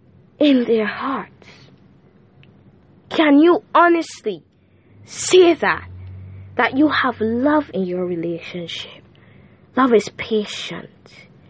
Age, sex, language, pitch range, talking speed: 10-29, female, English, 195-285 Hz, 95 wpm